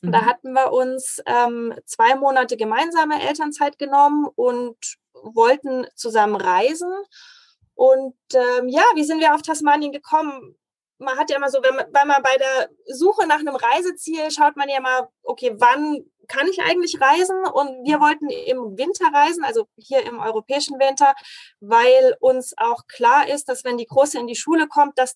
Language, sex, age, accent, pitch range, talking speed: German, female, 20-39, German, 255-345 Hz, 170 wpm